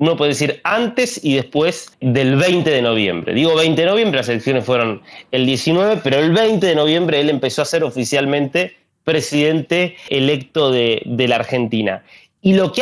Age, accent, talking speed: 30-49, Argentinian, 180 wpm